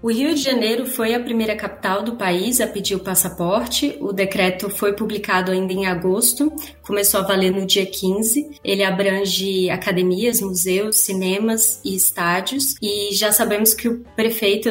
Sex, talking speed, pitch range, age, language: female, 165 wpm, 190-220 Hz, 20-39, Portuguese